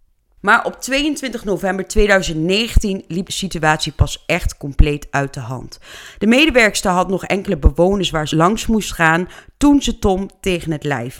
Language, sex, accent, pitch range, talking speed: Dutch, female, Dutch, 150-200 Hz, 165 wpm